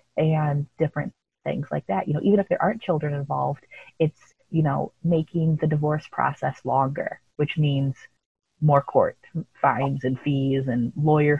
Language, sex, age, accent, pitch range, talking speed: English, female, 30-49, American, 140-170 Hz, 160 wpm